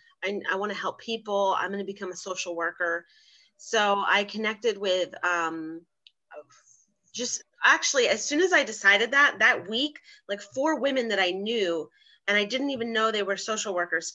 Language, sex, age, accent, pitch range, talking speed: English, female, 30-49, American, 165-205 Hz, 180 wpm